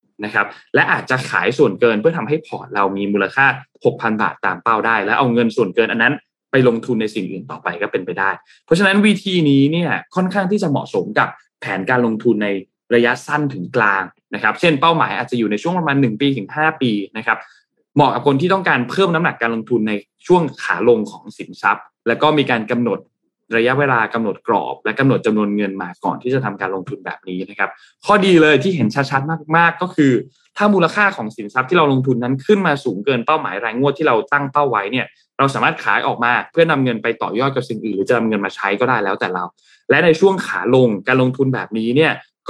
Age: 20-39